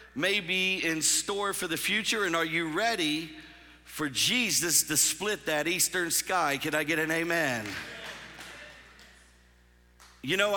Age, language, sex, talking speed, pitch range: 50-69, English, male, 140 wpm, 170-240 Hz